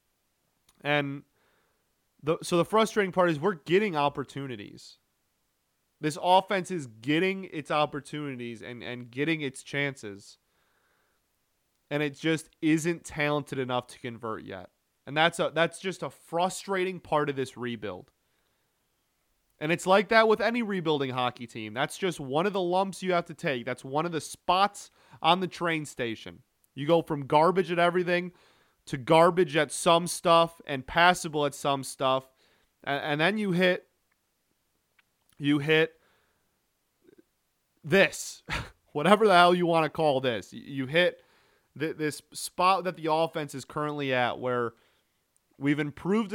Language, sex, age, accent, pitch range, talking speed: English, male, 30-49, American, 140-175 Hz, 145 wpm